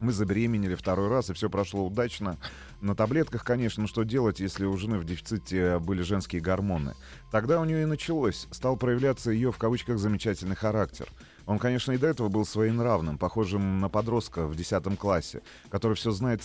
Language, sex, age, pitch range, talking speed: Russian, male, 30-49, 95-115 Hz, 180 wpm